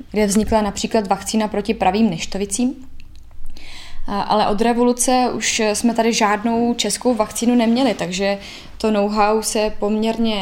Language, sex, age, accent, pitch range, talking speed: Czech, female, 20-39, native, 205-230 Hz, 125 wpm